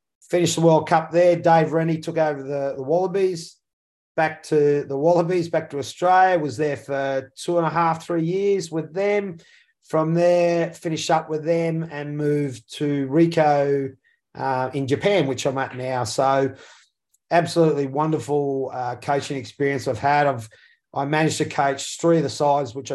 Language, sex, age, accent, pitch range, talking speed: English, male, 30-49, Australian, 130-150 Hz, 170 wpm